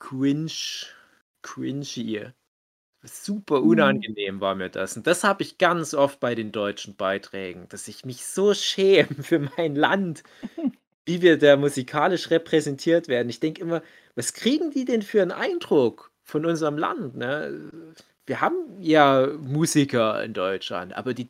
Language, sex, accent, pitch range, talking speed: German, male, German, 125-175 Hz, 145 wpm